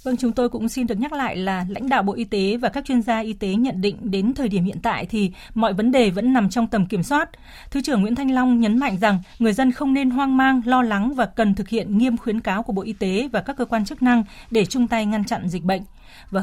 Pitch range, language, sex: 200-245 Hz, Vietnamese, female